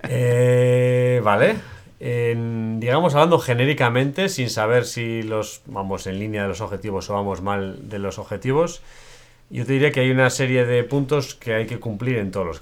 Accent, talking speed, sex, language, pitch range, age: Spanish, 180 wpm, male, Spanish, 105-150 Hz, 30-49